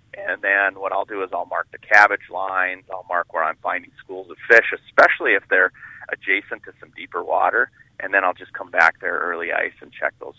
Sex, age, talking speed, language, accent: male, 30-49, 225 wpm, English, American